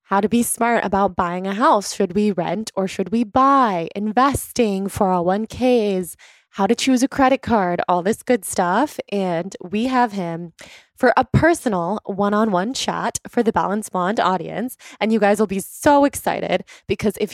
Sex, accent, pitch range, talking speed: female, American, 190-235 Hz, 175 wpm